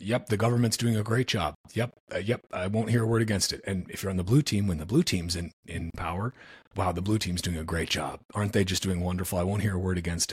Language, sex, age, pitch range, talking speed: English, male, 30-49, 85-105 Hz, 290 wpm